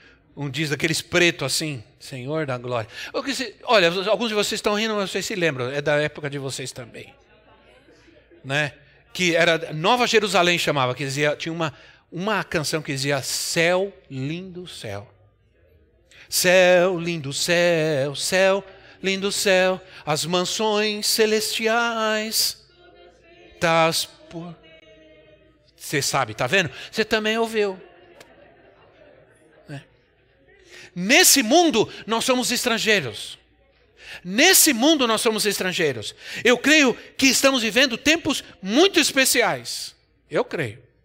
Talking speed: 115 wpm